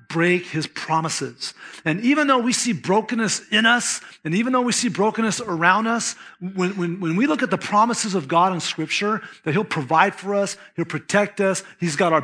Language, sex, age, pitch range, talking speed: English, male, 40-59, 165-215 Hz, 205 wpm